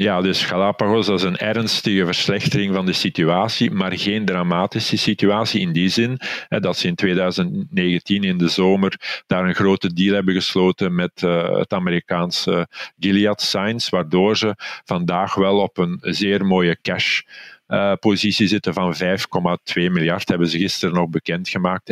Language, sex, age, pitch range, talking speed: Dutch, male, 50-69, 90-100 Hz, 150 wpm